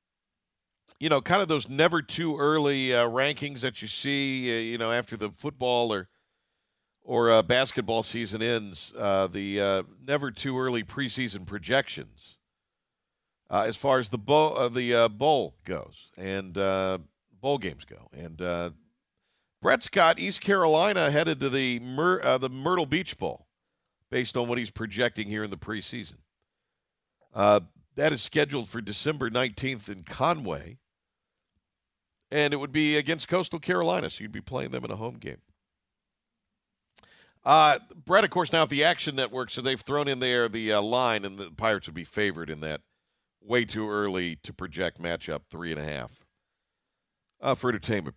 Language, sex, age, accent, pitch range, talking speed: English, male, 50-69, American, 100-145 Hz, 170 wpm